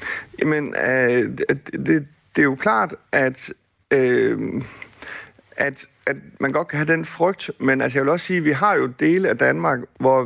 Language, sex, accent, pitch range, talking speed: Danish, male, native, 125-165 Hz, 185 wpm